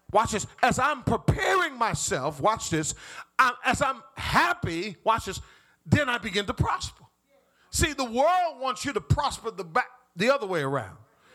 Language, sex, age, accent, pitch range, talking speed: English, male, 40-59, American, 210-315 Hz, 170 wpm